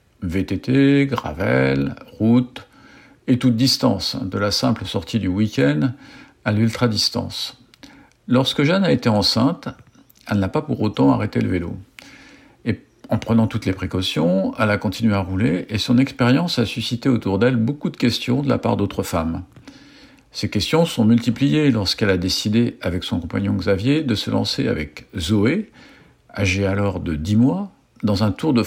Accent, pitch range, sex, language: French, 95-125 Hz, male, French